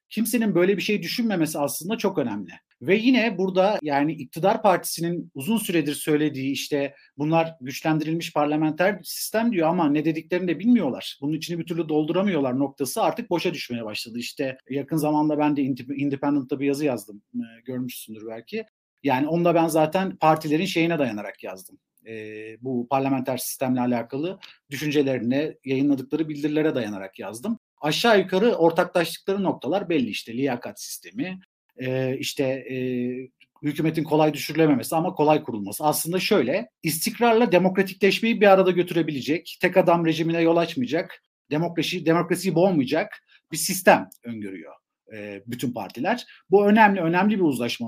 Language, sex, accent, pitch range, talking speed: Turkish, male, native, 140-190 Hz, 135 wpm